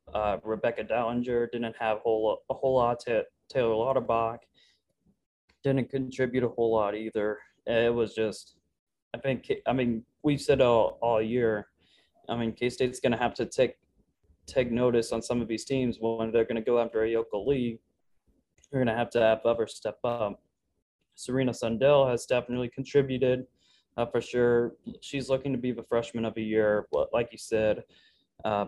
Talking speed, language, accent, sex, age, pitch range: 180 wpm, English, American, male, 20-39, 105-120 Hz